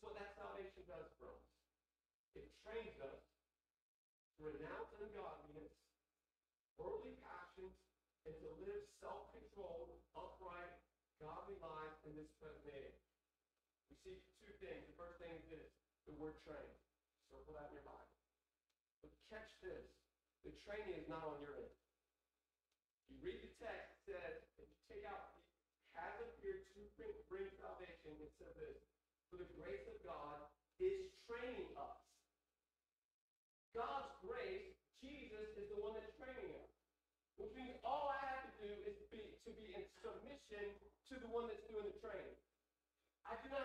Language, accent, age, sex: English, American, 40-59, male